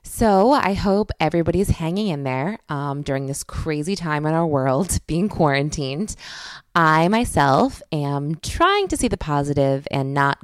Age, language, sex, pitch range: 20-39, English, female, 140-185 Hz